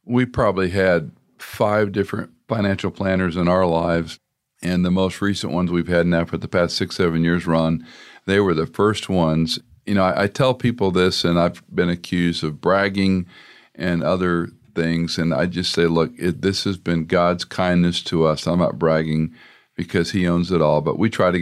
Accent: American